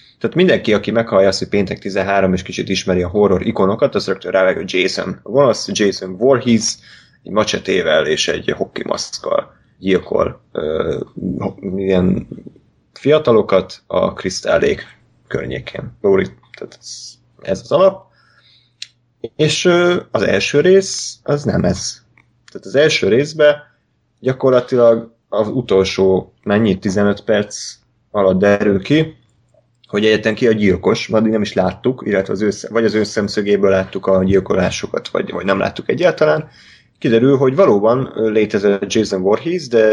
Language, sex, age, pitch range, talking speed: Hungarian, male, 30-49, 95-125 Hz, 130 wpm